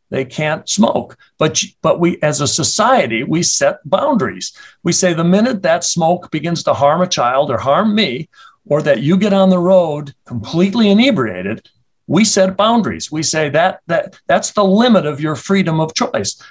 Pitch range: 135-190 Hz